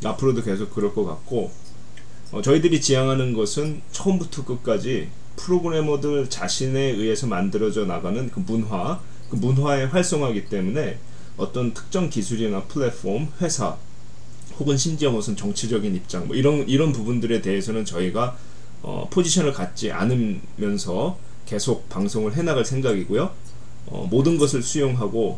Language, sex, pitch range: Korean, male, 100-145 Hz